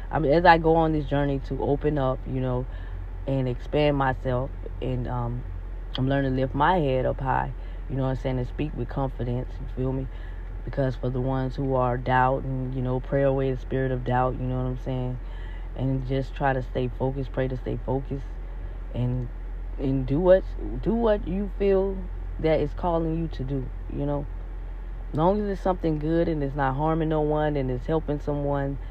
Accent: American